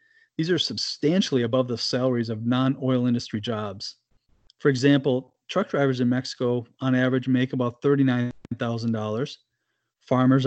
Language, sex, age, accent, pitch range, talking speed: English, male, 30-49, American, 125-150 Hz, 125 wpm